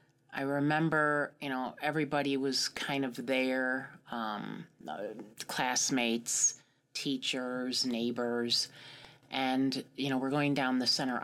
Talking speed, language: 100 wpm, English